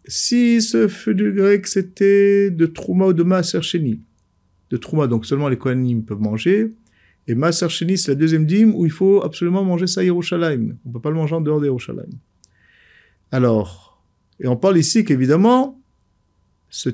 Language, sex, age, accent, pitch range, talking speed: French, male, 50-69, French, 115-185 Hz, 170 wpm